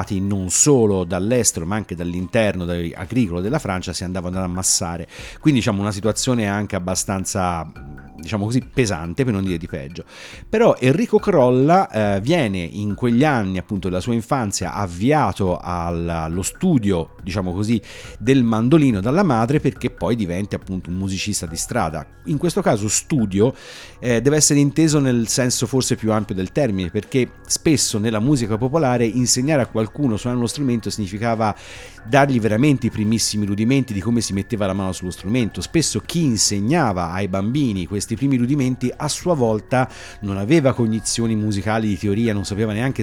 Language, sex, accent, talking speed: Italian, male, native, 160 wpm